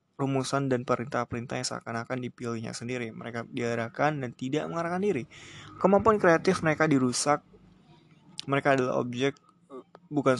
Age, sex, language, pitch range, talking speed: 20-39, male, Indonesian, 120-140 Hz, 120 wpm